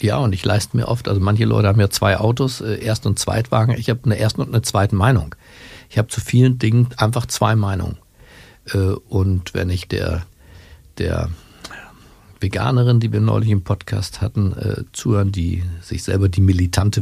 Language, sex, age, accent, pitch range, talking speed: German, male, 50-69, German, 90-110 Hz, 185 wpm